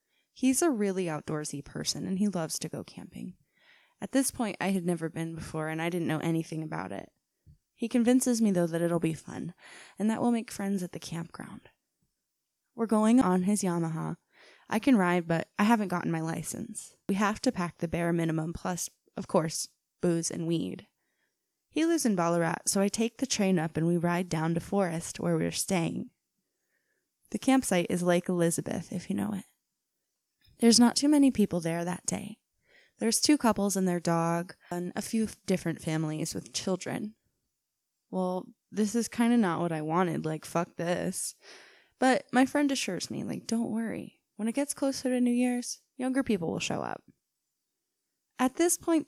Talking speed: 185 wpm